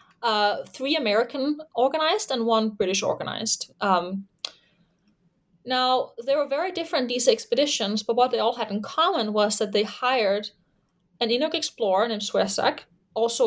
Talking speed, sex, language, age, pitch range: 140 wpm, female, English, 20-39, 200-255 Hz